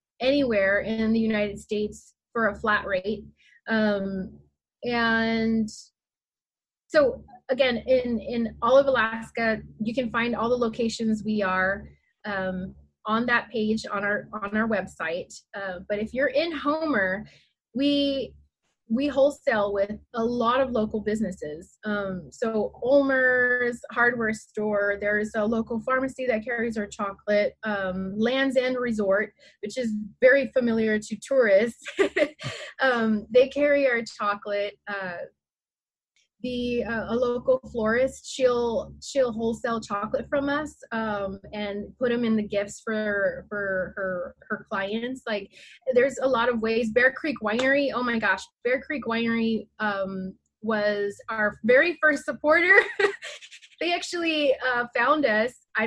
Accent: American